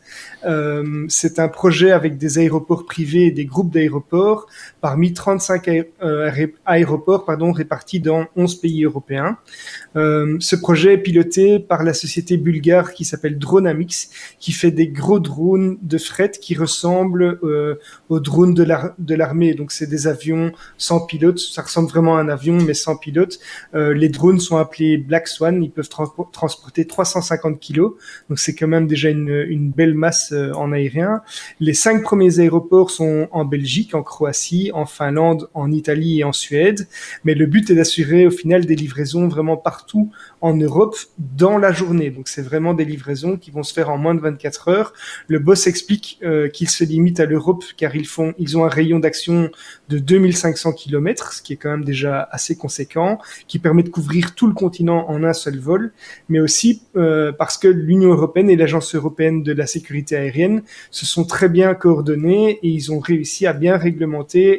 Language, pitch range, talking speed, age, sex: French, 155-180 Hz, 185 wpm, 30-49, male